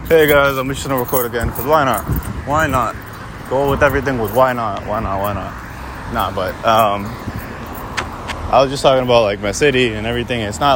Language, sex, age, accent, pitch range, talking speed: English, male, 20-39, American, 95-115 Hz, 225 wpm